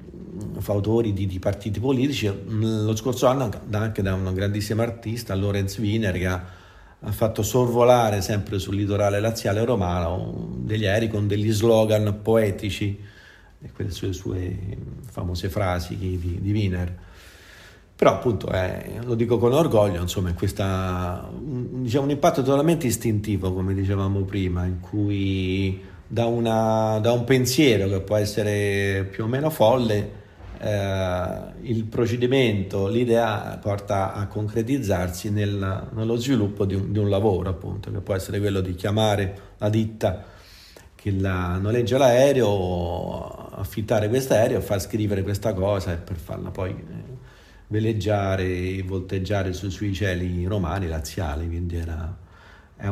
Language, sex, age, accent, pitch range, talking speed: Italian, male, 40-59, native, 95-110 Hz, 140 wpm